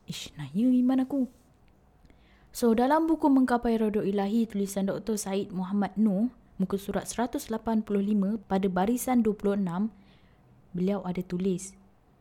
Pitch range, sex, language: 180-230 Hz, female, Indonesian